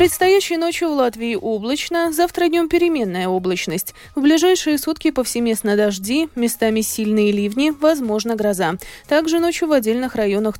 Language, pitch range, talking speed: Russian, 200-310 Hz, 135 wpm